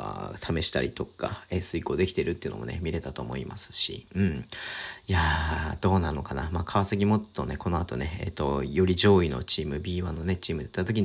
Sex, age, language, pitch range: male, 40-59, Japanese, 85-115 Hz